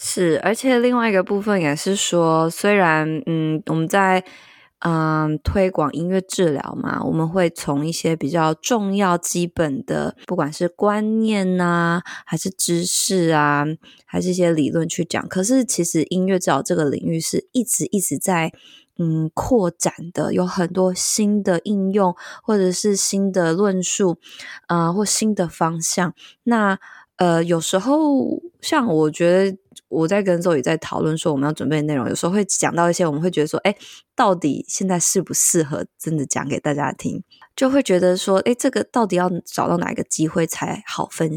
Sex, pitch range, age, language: female, 160-195 Hz, 20-39, Chinese